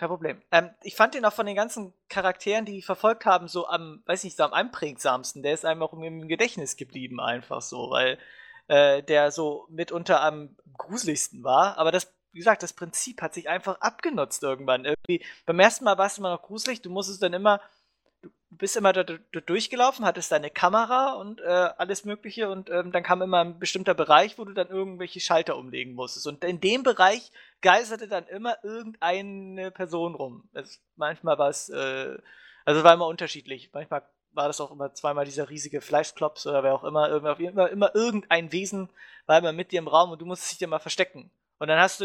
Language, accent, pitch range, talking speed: English, German, 155-195 Hz, 205 wpm